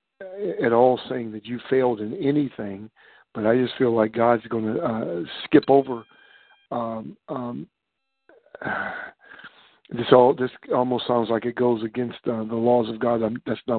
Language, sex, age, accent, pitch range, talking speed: English, male, 60-79, American, 110-125 Hz, 160 wpm